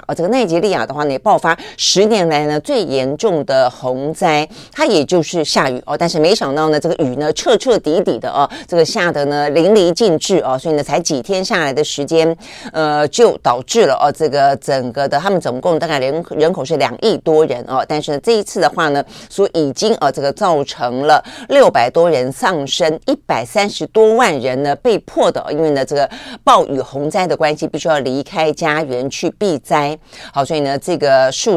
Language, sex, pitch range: Chinese, female, 140-175 Hz